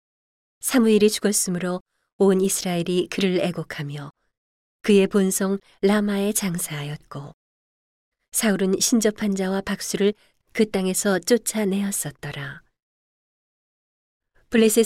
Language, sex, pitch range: Korean, female, 170-210 Hz